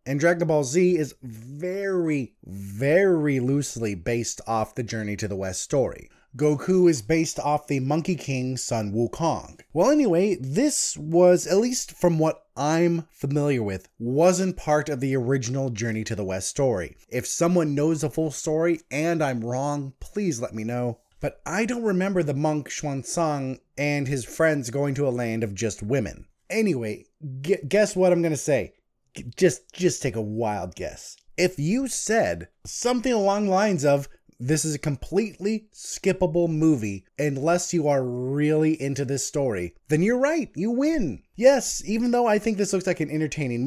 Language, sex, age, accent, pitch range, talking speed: English, male, 20-39, American, 130-180 Hz, 170 wpm